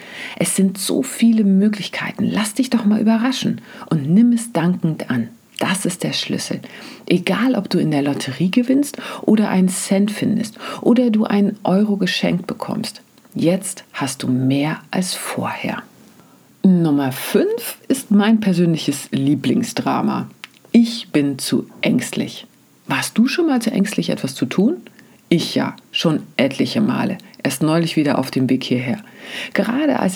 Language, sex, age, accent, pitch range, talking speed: German, female, 40-59, German, 165-230 Hz, 150 wpm